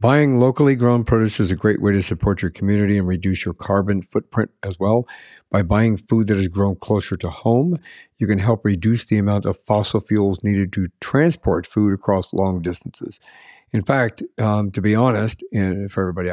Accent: American